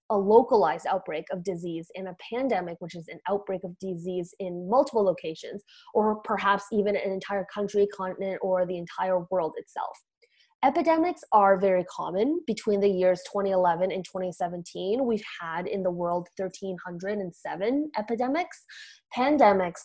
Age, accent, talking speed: 20-39, American, 140 wpm